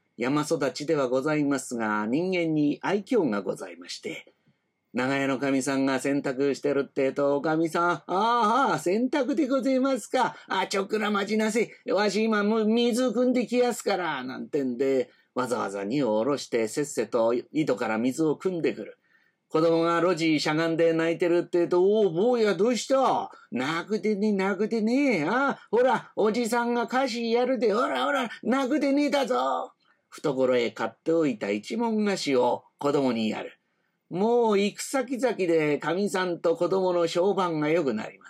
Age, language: 40-59, Japanese